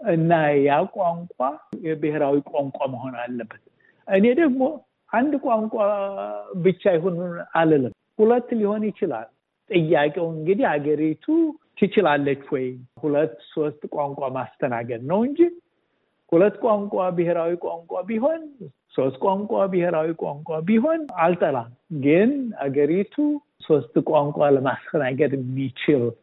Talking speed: 105 wpm